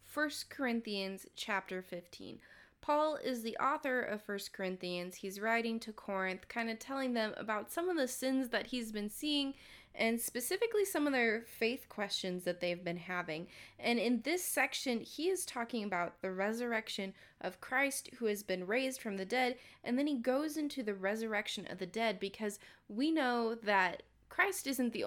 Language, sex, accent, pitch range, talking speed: English, female, American, 195-245 Hz, 180 wpm